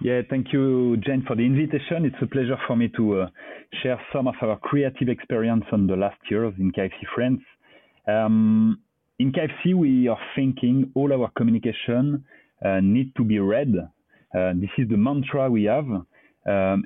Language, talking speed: English, 175 wpm